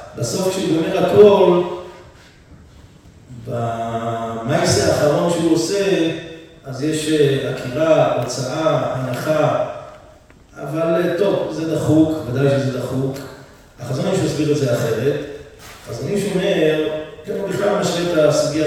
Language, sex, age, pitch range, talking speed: Hebrew, male, 40-59, 130-175 Hz, 115 wpm